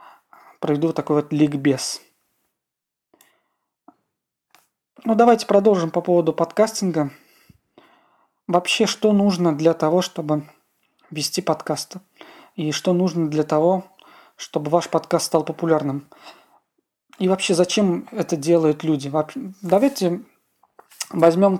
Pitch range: 155-190 Hz